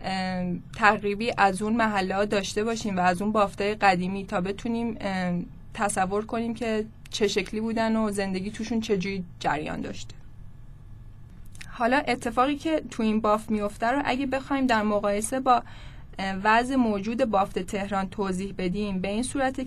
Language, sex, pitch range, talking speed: Persian, female, 185-245 Hz, 145 wpm